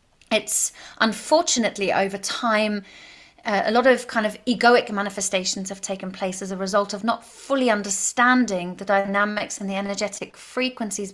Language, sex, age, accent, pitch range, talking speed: English, female, 30-49, British, 195-225 Hz, 150 wpm